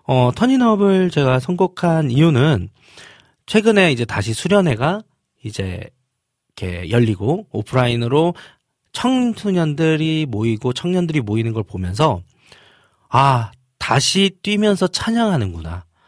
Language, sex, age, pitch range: Korean, male, 40-59, 110-160 Hz